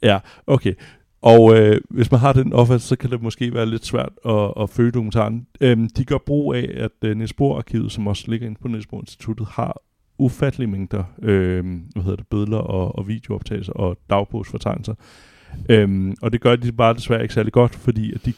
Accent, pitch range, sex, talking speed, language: native, 100-120 Hz, male, 195 wpm, Danish